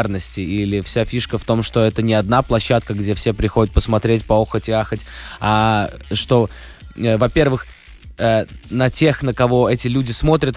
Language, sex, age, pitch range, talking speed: Russian, male, 20-39, 100-120 Hz, 155 wpm